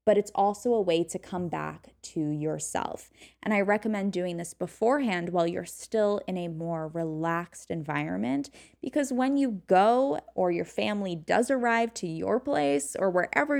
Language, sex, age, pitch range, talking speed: English, female, 10-29, 175-230 Hz, 170 wpm